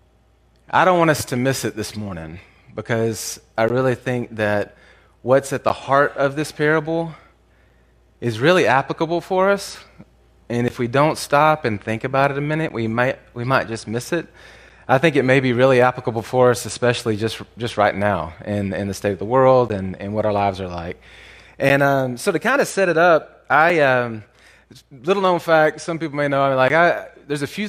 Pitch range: 115-150 Hz